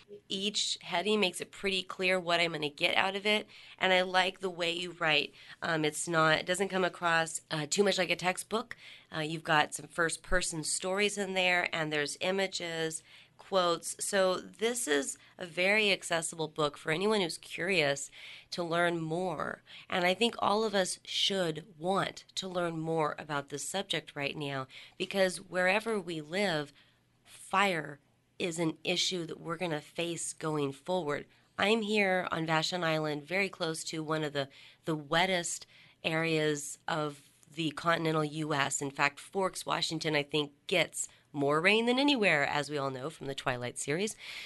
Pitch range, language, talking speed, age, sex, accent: 155-190 Hz, English, 175 wpm, 30-49, female, American